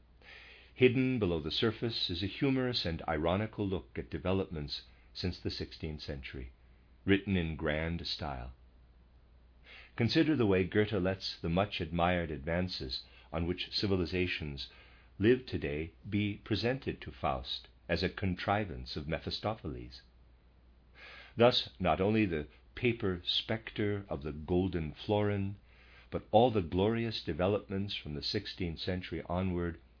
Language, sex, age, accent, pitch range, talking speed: English, male, 50-69, American, 65-105 Hz, 125 wpm